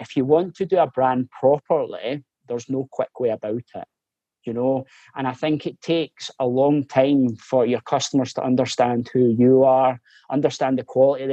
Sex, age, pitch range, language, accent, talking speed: male, 20-39, 120-140 Hz, English, British, 185 wpm